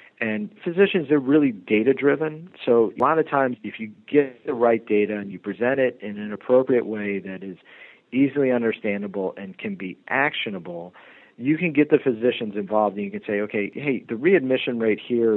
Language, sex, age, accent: English, male, 40-59, American